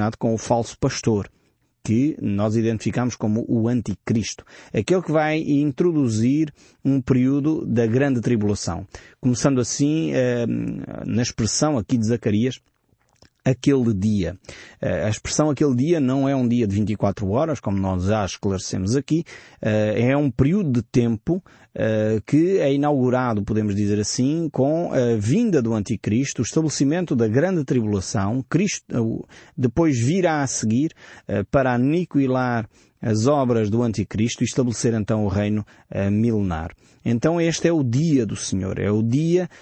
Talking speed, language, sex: 140 wpm, Portuguese, male